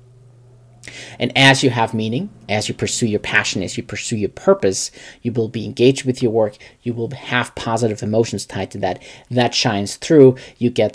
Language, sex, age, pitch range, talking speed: English, male, 40-59, 110-130 Hz, 190 wpm